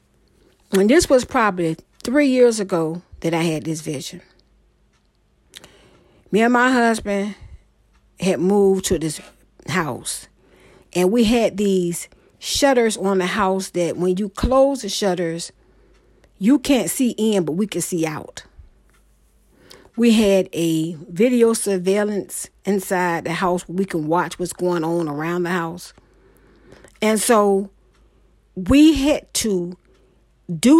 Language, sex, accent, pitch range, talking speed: English, female, American, 170-225 Hz, 135 wpm